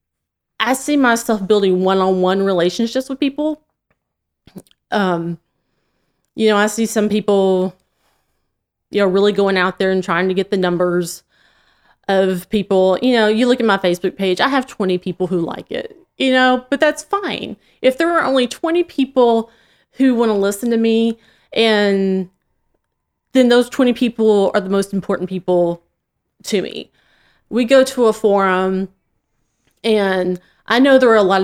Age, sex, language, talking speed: 30-49, female, English, 160 wpm